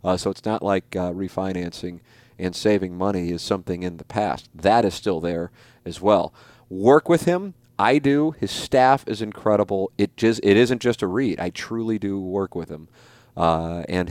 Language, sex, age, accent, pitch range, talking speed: English, male, 40-59, American, 90-120 Hz, 190 wpm